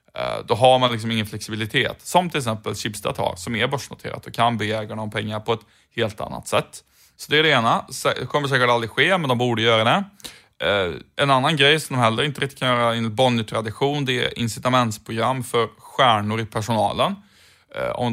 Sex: male